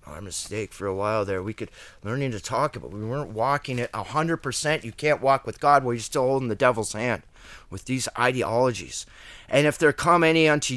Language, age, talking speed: English, 30-49, 215 wpm